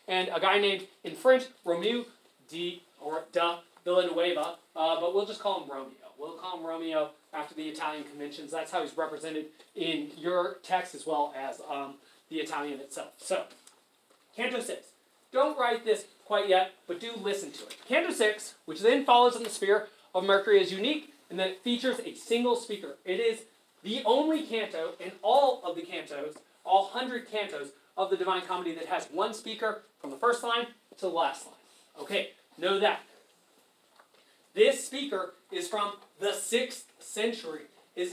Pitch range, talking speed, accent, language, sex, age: 175-235 Hz, 175 wpm, American, English, male, 30-49